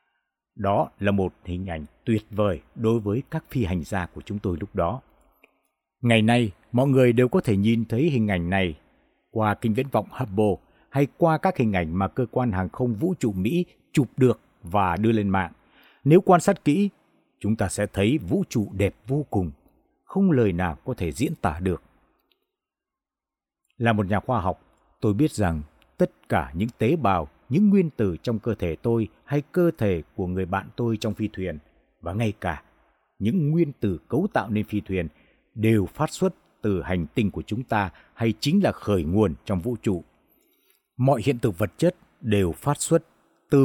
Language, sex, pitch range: Vietnamese, male, 95-130 Hz